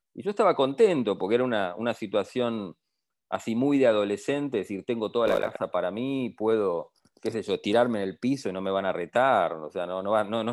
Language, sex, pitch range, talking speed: English, male, 105-145 Hz, 240 wpm